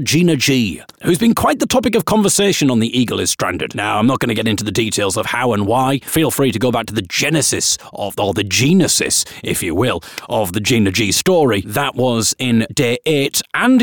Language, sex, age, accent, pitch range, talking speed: English, male, 40-59, British, 120-185 Hz, 230 wpm